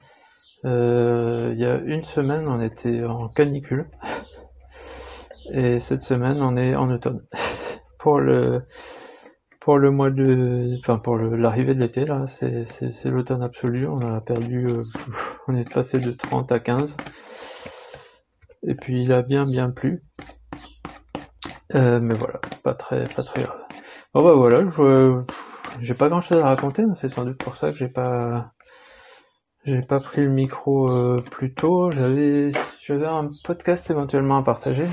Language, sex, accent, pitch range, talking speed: French, male, French, 125-150 Hz, 160 wpm